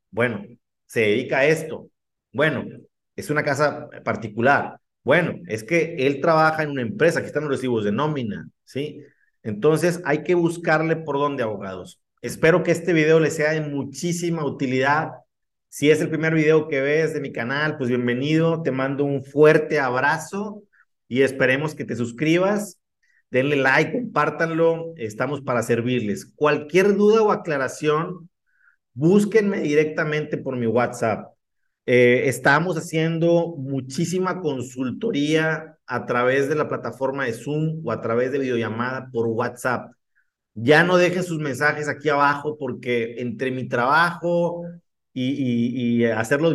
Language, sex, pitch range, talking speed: Spanish, male, 130-160 Hz, 145 wpm